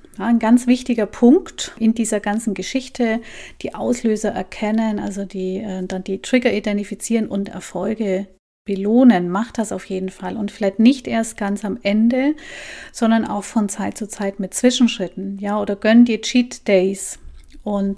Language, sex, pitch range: German, female, 200-235 Hz